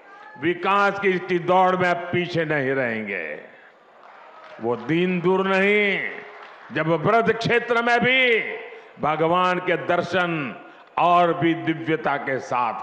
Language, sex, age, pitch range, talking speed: Hindi, male, 50-69, 175-245 Hz, 120 wpm